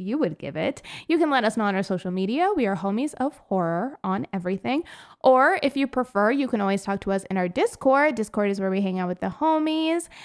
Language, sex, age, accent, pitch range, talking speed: English, female, 20-39, American, 190-275 Hz, 245 wpm